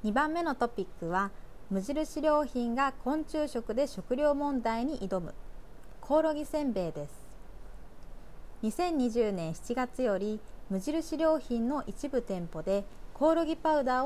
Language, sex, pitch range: Japanese, female, 190-290 Hz